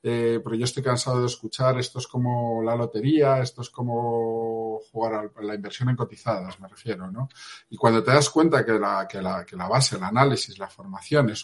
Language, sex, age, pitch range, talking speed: Spanish, male, 50-69, 110-130 Hz, 215 wpm